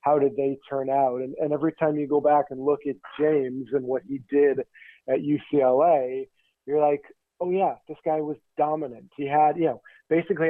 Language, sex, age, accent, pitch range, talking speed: English, male, 40-59, American, 125-150 Hz, 200 wpm